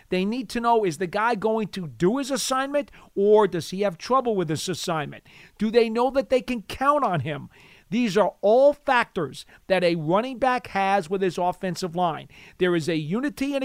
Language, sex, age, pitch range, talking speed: English, male, 50-69, 175-235 Hz, 205 wpm